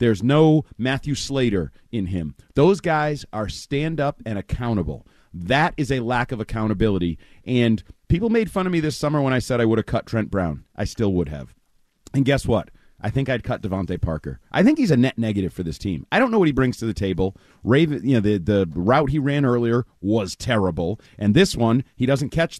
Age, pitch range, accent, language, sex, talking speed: 40-59, 105-140 Hz, American, English, male, 220 wpm